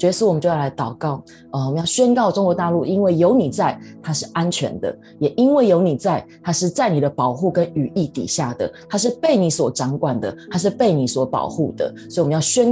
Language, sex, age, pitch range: Chinese, female, 20-39, 150-210 Hz